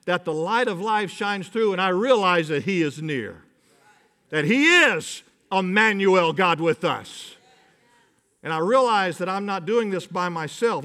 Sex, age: male, 50-69